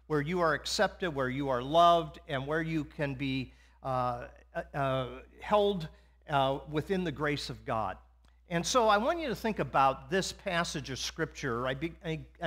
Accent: American